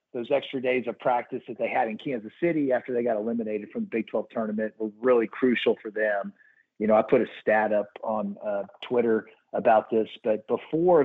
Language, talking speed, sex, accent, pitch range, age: English, 210 wpm, male, American, 110-135 Hz, 50-69